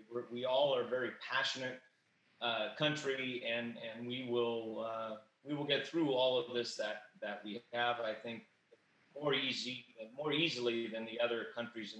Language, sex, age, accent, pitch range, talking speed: English, male, 30-49, American, 115-135 Hz, 175 wpm